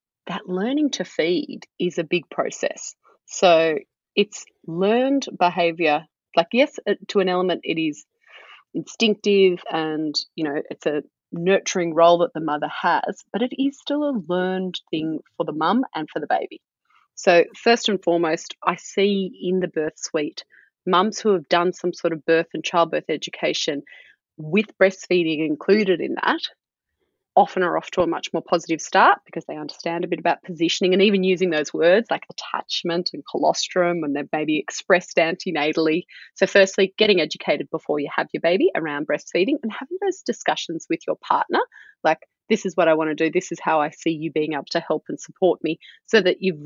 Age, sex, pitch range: 30-49, female, 165-210 Hz